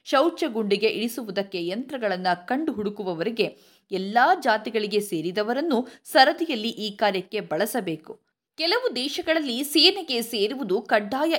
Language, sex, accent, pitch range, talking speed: Kannada, female, native, 200-285 Hz, 95 wpm